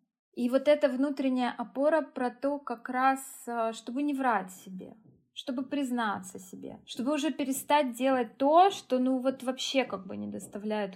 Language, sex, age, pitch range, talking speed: Russian, female, 20-39, 215-260 Hz, 160 wpm